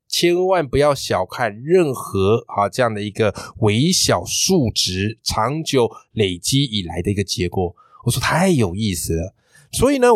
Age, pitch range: 20-39, 100-155 Hz